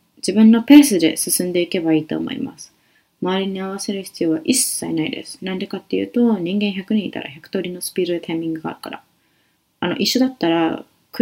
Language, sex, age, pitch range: Japanese, female, 20-39, 185-275 Hz